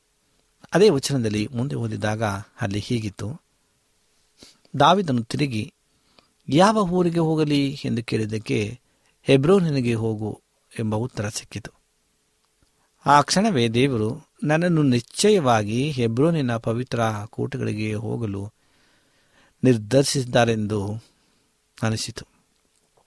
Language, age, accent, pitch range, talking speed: Kannada, 50-69, native, 110-140 Hz, 75 wpm